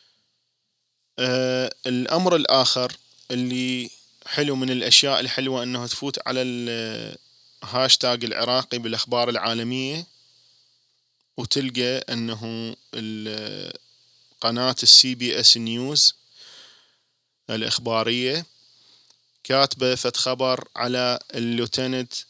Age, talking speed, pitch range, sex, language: 20-39, 75 wpm, 115-125 Hz, male, Arabic